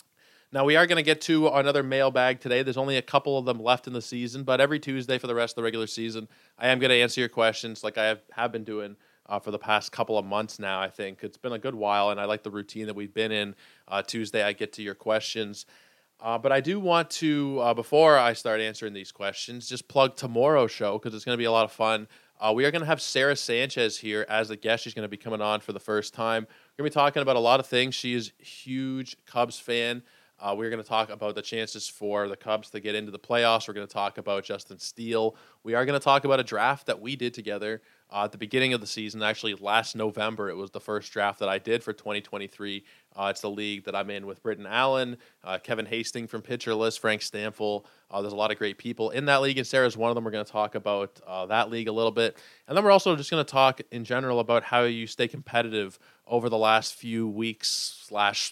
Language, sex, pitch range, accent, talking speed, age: English, male, 105-125 Hz, American, 260 wpm, 20-39